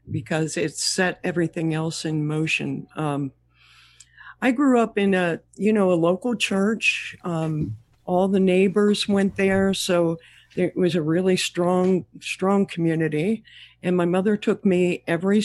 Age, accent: 60-79, American